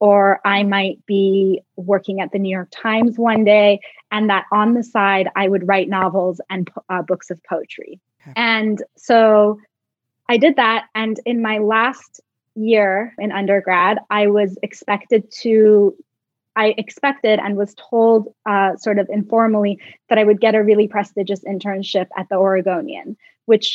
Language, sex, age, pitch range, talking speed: English, female, 20-39, 190-220 Hz, 160 wpm